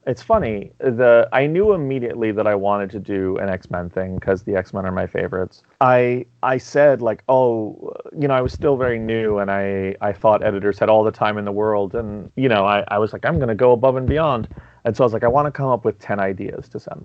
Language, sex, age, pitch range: English, male, 30-49, 100-120 Hz